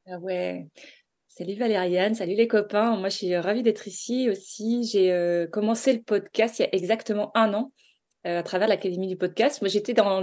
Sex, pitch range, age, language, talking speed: female, 190-240 Hz, 20-39, French, 195 wpm